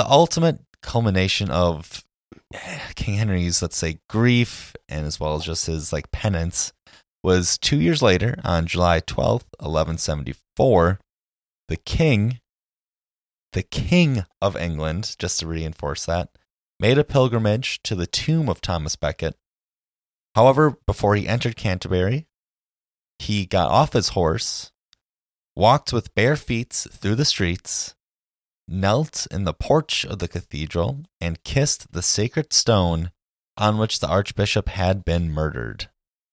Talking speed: 135 wpm